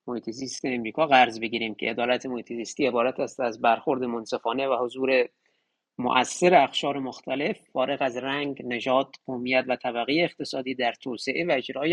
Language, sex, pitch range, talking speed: Persian, male, 120-145 Hz, 145 wpm